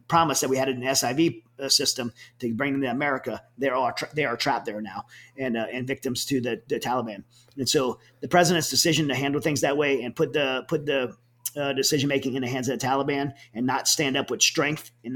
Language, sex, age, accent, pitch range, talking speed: English, male, 40-59, American, 125-140 Hz, 220 wpm